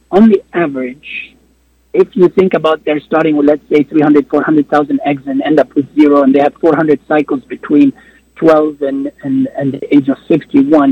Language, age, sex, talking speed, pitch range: Arabic, 60-79, male, 185 wpm, 140-205 Hz